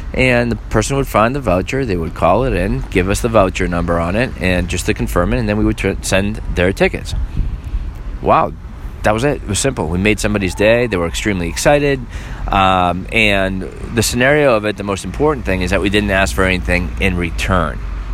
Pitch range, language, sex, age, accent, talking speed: 85-105 Hz, English, male, 30-49, American, 215 wpm